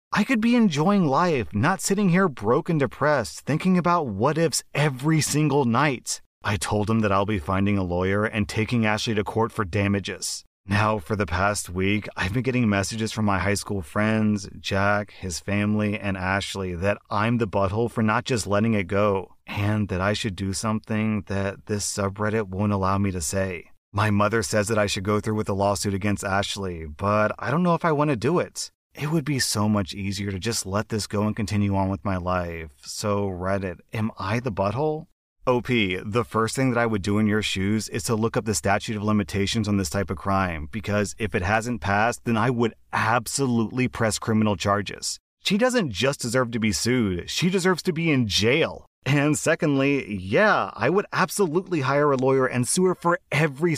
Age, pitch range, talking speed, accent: 30-49, 100-130 Hz, 205 wpm, American